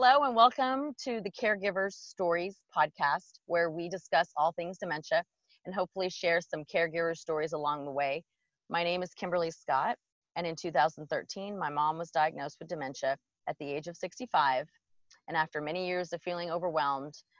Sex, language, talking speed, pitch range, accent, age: female, English, 170 wpm, 150-185 Hz, American, 30-49